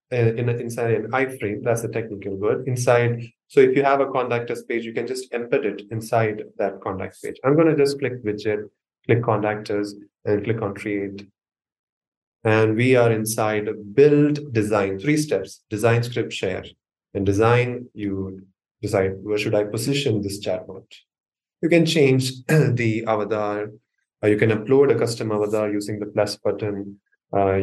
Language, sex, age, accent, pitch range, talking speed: English, male, 20-39, Indian, 105-130 Hz, 160 wpm